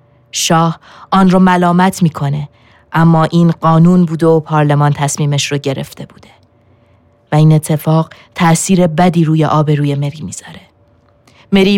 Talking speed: 130 wpm